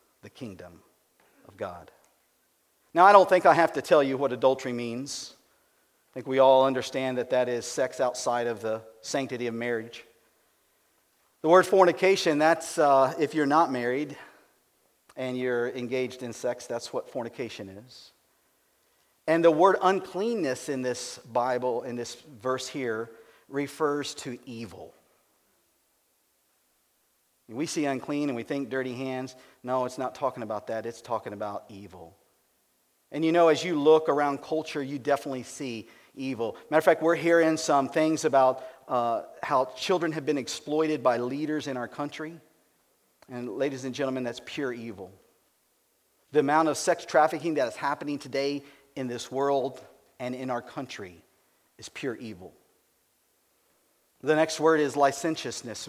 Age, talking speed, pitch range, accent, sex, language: 50-69, 155 wpm, 125-155 Hz, American, male, English